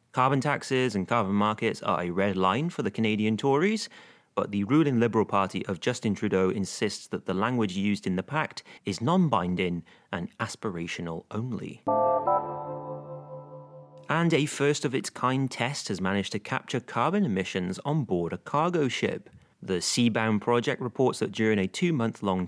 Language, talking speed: English, 150 wpm